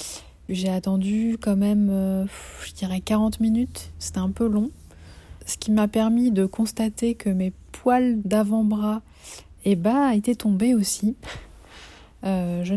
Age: 30-49